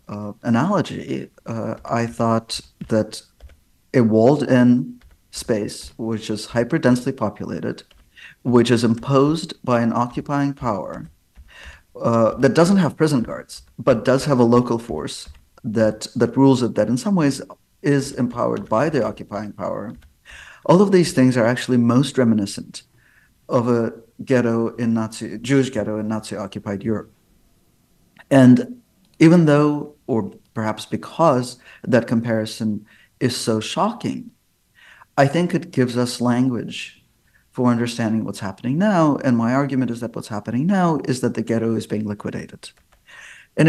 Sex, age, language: male, 50-69, English